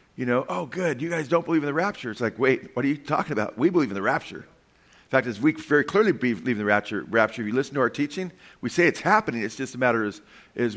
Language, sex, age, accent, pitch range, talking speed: English, male, 40-59, American, 110-150 Hz, 285 wpm